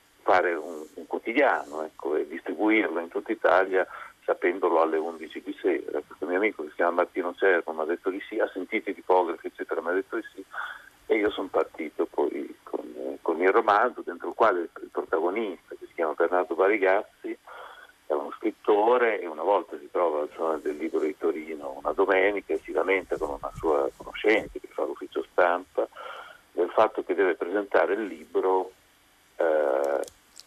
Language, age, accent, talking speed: Italian, 50-69, native, 185 wpm